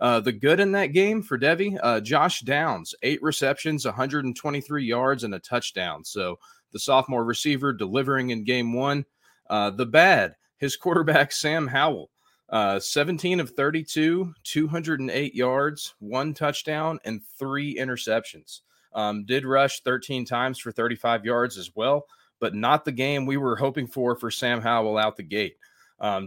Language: English